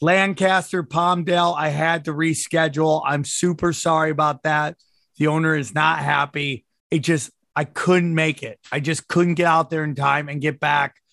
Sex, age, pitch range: male, 30-49, 150-170 Hz